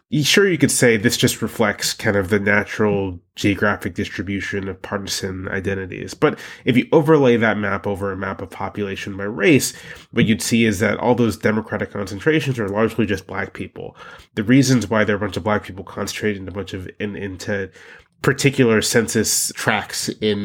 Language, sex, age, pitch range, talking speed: English, male, 20-39, 100-115 Hz, 190 wpm